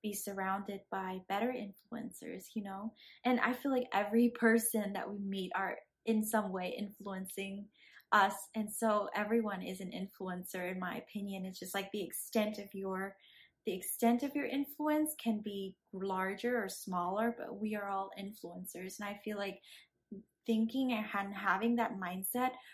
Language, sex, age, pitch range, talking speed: English, female, 20-39, 195-230 Hz, 165 wpm